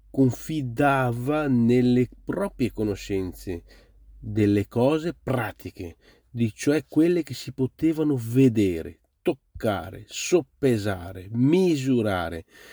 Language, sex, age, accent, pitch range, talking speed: Italian, male, 40-59, native, 105-130 Hz, 80 wpm